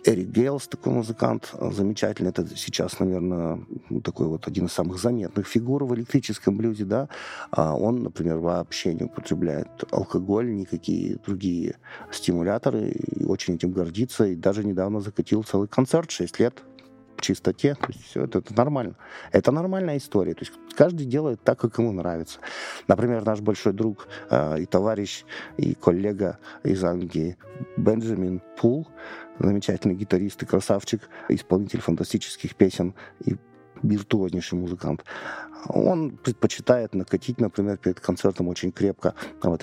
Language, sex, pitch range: Russian, male, 90-115 Hz